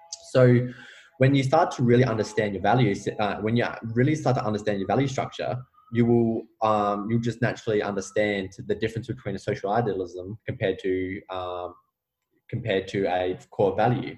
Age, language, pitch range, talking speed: 20-39, English, 100-120 Hz, 170 wpm